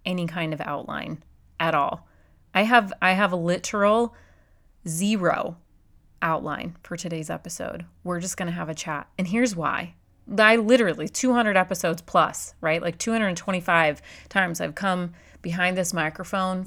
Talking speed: 150 wpm